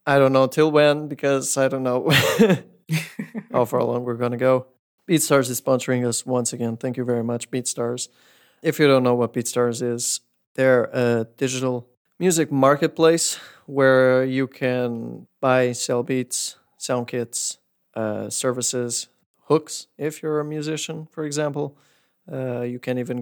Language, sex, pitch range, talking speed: English, male, 120-135 Hz, 155 wpm